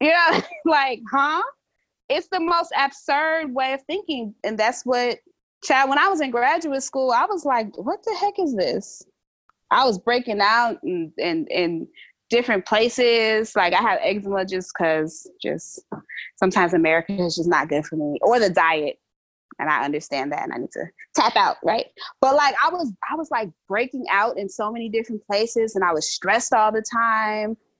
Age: 20-39